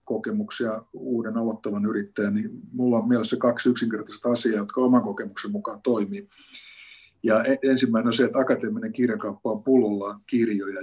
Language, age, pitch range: Finnish, 50-69, 110-135 Hz